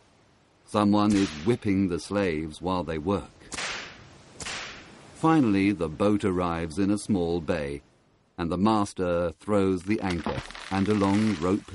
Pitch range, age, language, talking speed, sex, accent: 85-110 Hz, 50-69, English, 135 wpm, male, British